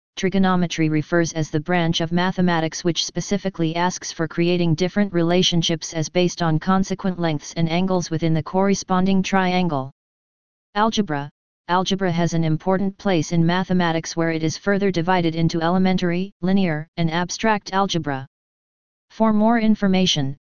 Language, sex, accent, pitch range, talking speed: English, female, American, 165-190 Hz, 135 wpm